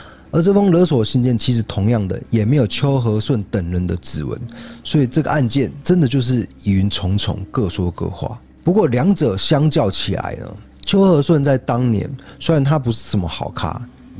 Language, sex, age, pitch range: Chinese, male, 20-39, 100-140 Hz